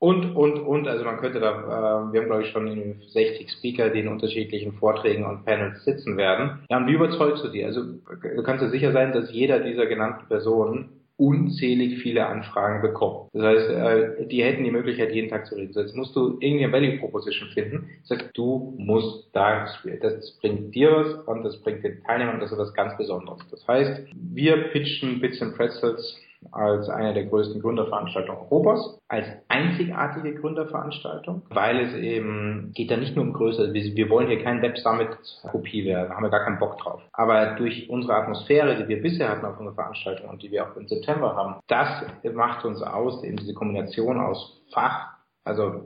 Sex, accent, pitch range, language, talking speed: male, German, 110-150 Hz, German, 200 wpm